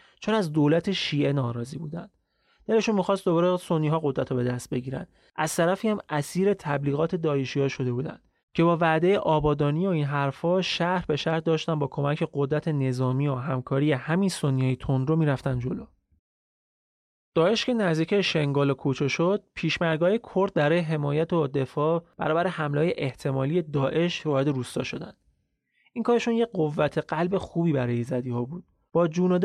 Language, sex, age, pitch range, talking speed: Persian, male, 30-49, 140-175 Hz, 155 wpm